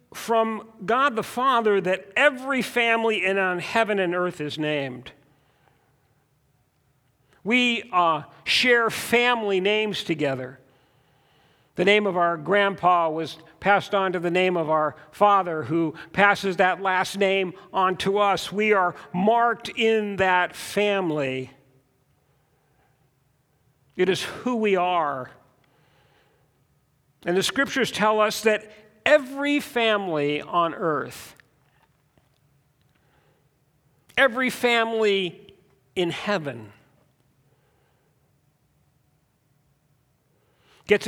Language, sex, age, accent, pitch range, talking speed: English, male, 50-69, American, 140-210 Hz, 100 wpm